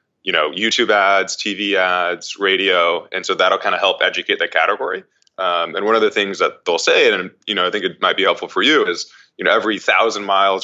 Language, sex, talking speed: English, male, 235 wpm